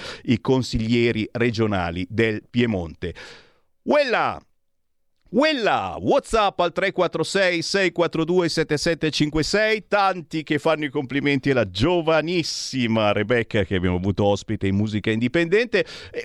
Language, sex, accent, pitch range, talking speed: Italian, male, native, 100-150 Hz, 105 wpm